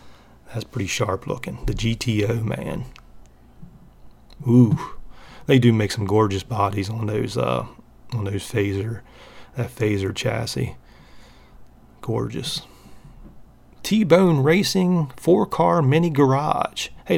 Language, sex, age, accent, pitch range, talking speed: English, male, 40-59, American, 100-140 Hz, 110 wpm